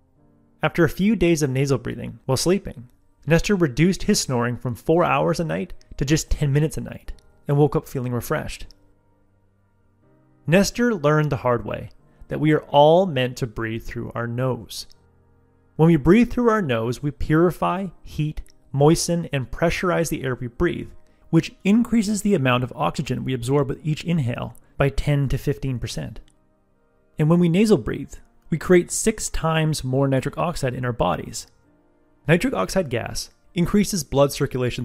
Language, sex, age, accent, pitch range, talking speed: English, male, 30-49, American, 115-165 Hz, 165 wpm